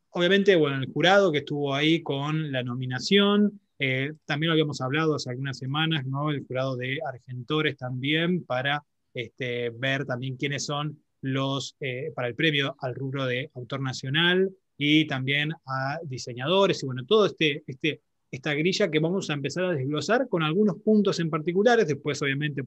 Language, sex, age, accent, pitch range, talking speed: Spanish, male, 20-39, Argentinian, 135-175 Hz, 170 wpm